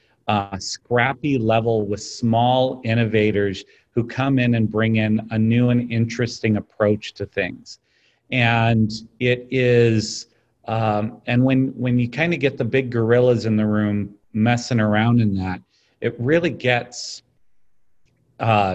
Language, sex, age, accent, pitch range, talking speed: English, male, 40-59, American, 110-125 Hz, 140 wpm